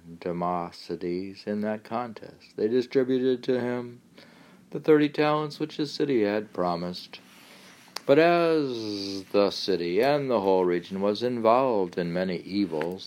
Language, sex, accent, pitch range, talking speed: English, male, American, 90-130 Hz, 135 wpm